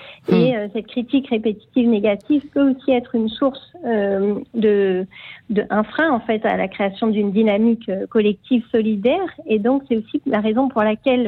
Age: 40-59